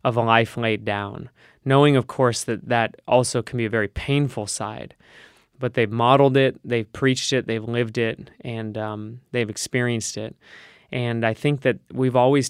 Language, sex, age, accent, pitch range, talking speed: English, male, 20-39, American, 115-130 Hz, 180 wpm